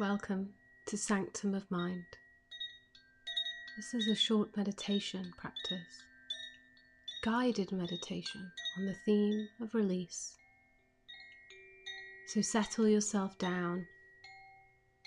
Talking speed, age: 90 wpm, 30-49